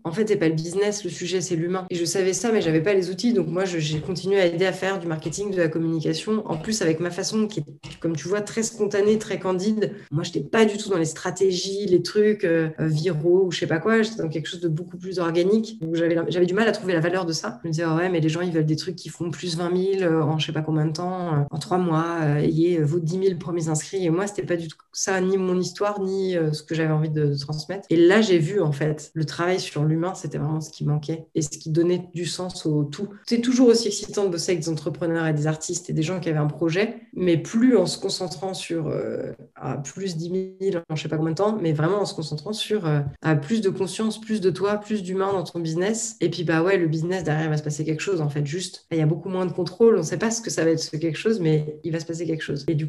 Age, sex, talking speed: 30-49, female, 295 wpm